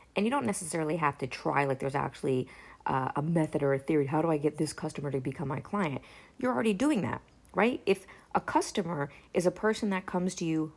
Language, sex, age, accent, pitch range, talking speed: English, female, 40-59, American, 145-205 Hz, 230 wpm